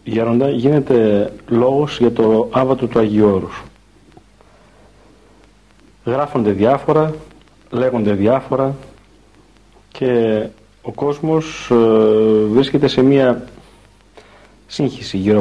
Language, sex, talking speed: Greek, male, 80 wpm